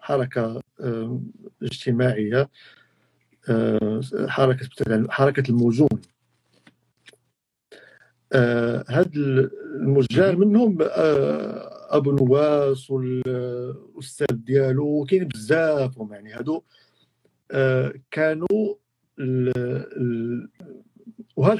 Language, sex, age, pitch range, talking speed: Arabic, male, 50-69, 125-165 Hz, 50 wpm